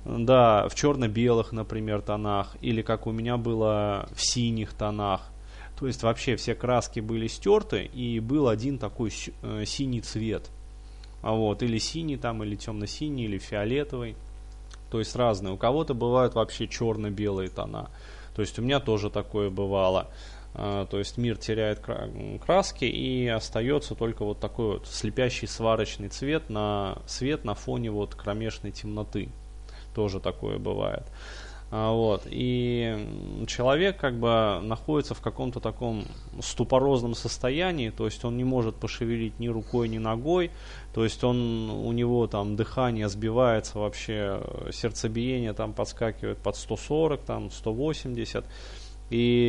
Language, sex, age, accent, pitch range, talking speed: Russian, male, 20-39, native, 105-125 Hz, 135 wpm